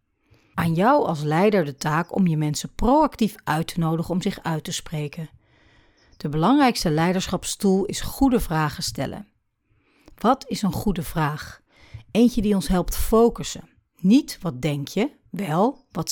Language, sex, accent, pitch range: Dutch, female, Dutch, 150-210 Hz